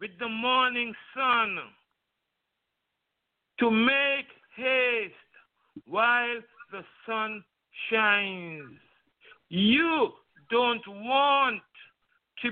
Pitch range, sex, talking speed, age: 195-265 Hz, male, 70 wpm, 60-79